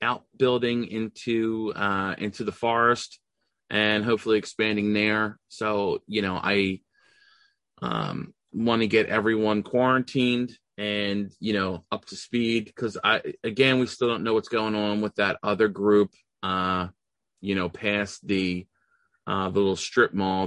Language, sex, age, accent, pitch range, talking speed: English, male, 30-49, American, 100-120 Hz, 145 wpm